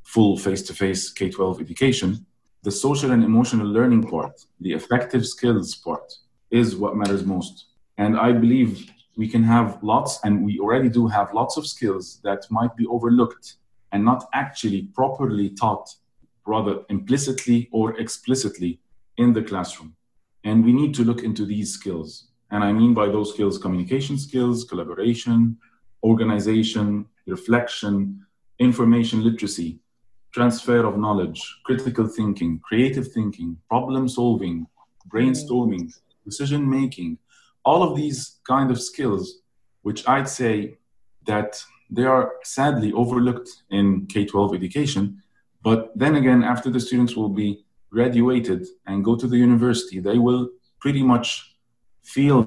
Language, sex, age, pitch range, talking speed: English, male, 40-59, 100-125 Hz, 135 wpm